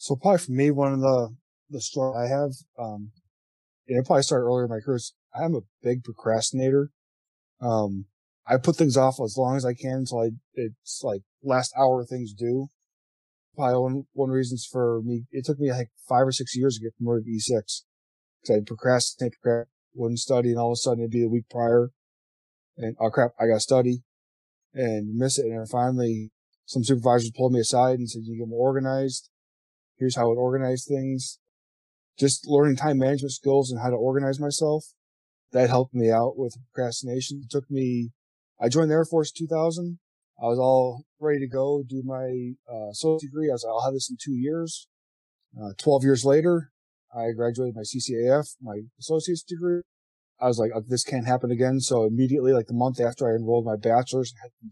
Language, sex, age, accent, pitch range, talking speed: English, male, 20-39, American, 115-135 Hz, 200 wpm